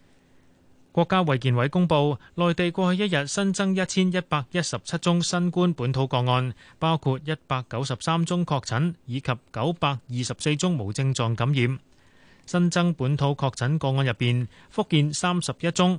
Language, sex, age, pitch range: Chinese, male, 30-49, 120-165 Hz